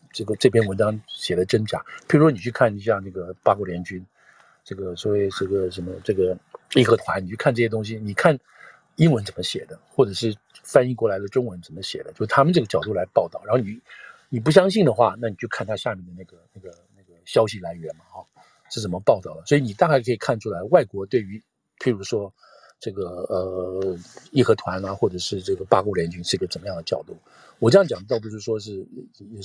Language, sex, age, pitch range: Chinese, male, 50-69, 95-125 Hz